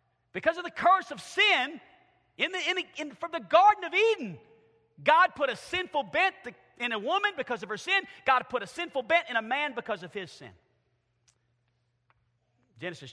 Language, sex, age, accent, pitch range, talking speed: English, male, 40-59, American, 160-230 Hz, 185 wpm